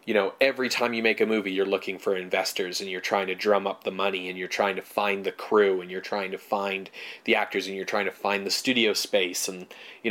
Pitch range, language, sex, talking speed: 100-115 Hz, English, male, 260 wpm